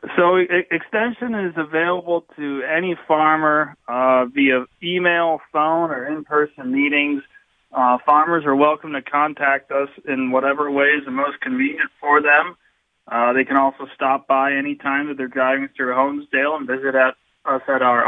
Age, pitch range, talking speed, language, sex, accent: 30-49, 135-160 Hz, 165 wpm, English, male, American